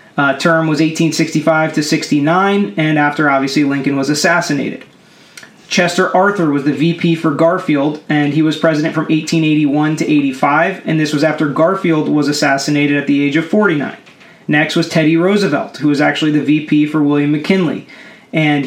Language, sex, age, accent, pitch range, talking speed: English, male, 30-49, American, 150-165 Hz, 165 wpm